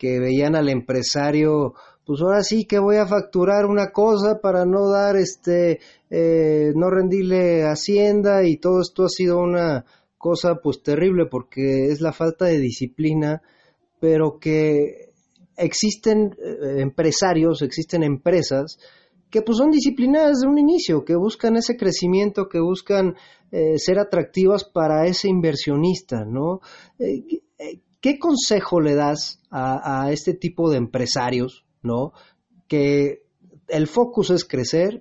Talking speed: 135 wpm